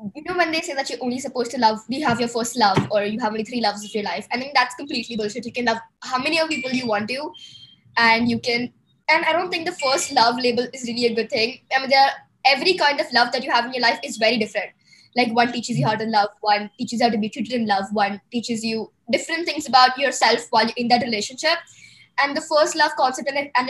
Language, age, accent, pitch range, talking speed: English, 20-39, Indian, 235-290 Hz, 275 wpm